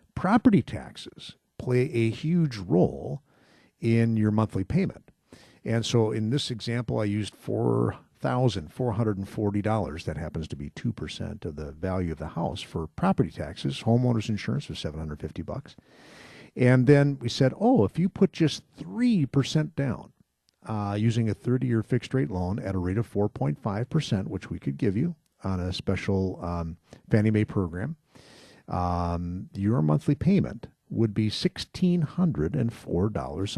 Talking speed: 140 wpm